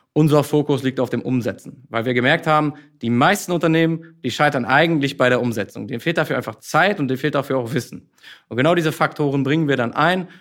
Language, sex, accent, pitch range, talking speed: German, male, German, 120-150 Hz, 220 wpm